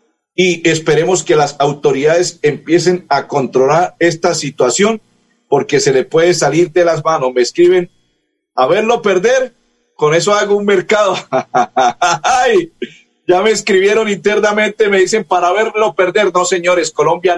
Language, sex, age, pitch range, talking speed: Spanish, male, 50-69, 165-215 Hz, 140 wpm